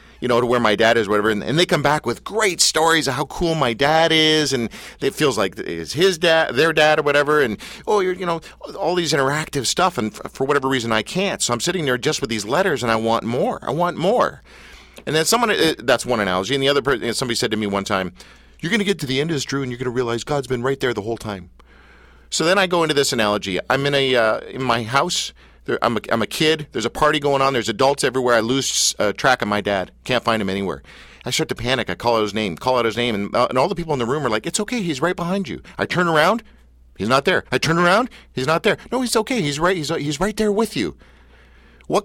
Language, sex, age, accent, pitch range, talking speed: English, male, 50-69, American, 110-170 Hz, 280 wpm